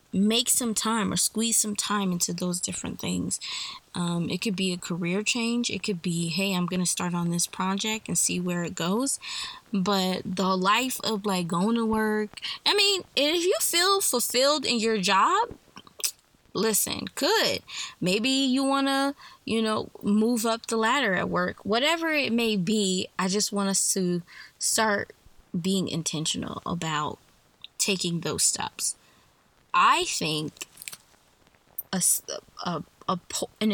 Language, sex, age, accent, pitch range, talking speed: English, female, 20-39, American, 180-225 Hz, 150 wpm